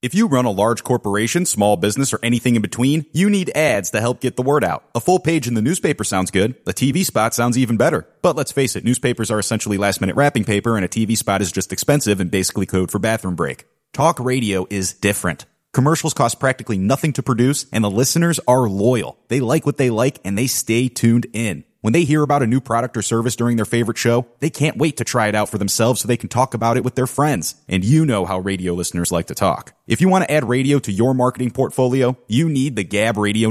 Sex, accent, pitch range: male, American, 105-135 Hz